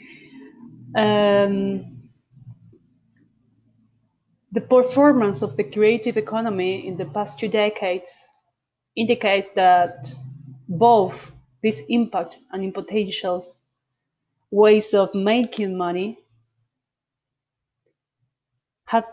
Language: Spanish